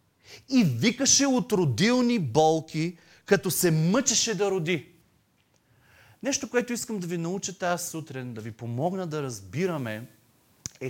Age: 30-49